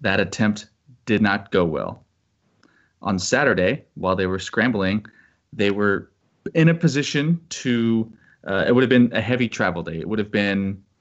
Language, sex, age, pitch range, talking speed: English, male, 20-39, 95-110 Hz, 170 wpm